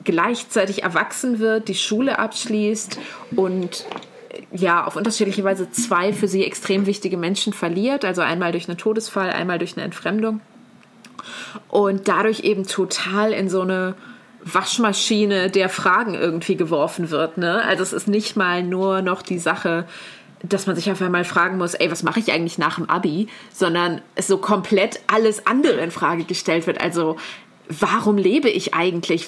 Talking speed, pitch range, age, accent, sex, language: 160 wpm, 190-230 Hz, 20-39, German, female, German